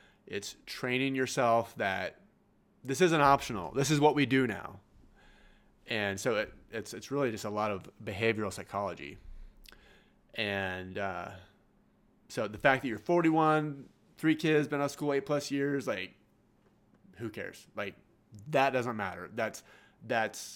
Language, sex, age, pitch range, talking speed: English, male, 30-49, 105-130 Hz, 150 wpm